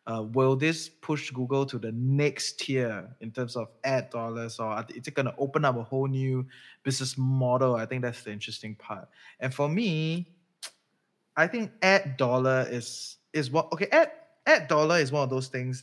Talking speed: 195 wpm